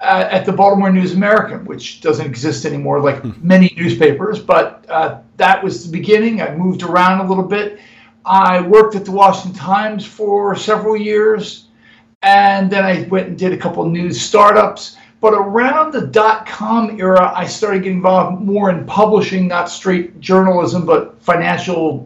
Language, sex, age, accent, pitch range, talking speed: English, male, 50-69, American, 175-210 Hz, 170 wpm